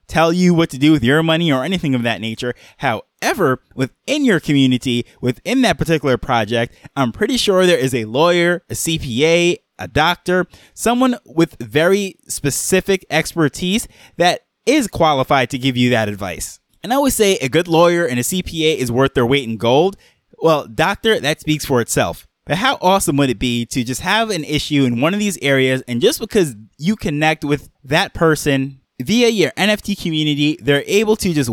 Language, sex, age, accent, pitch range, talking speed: English, male, 20-39, American, 135-180 Hz, 190 wpm